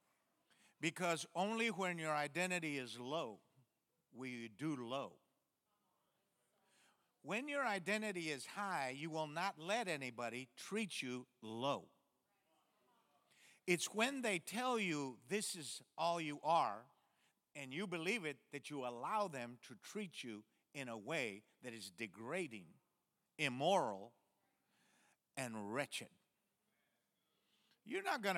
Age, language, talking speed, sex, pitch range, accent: 50-69, English, 120 wpm, male, 140-210 Hz, American